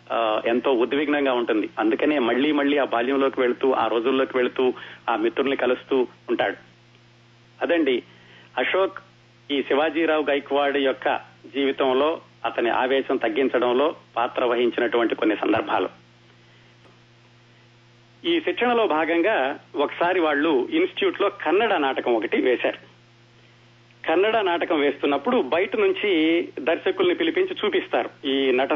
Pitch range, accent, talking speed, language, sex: 120-195 Hz, native, 105 wpm, Telugu, male